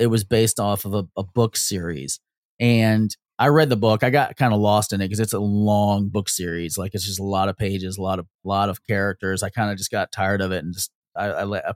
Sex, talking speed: male, 275 wpm